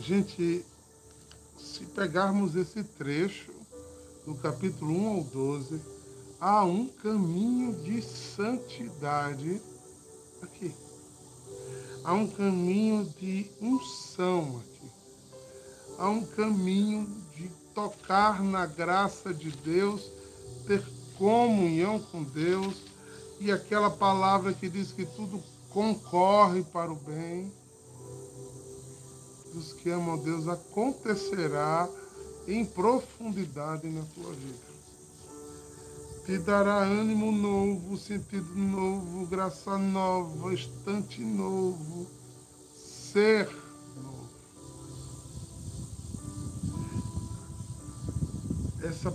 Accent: Brazilian